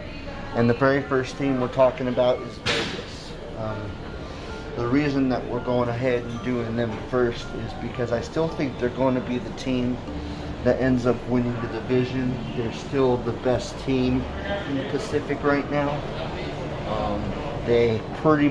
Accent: American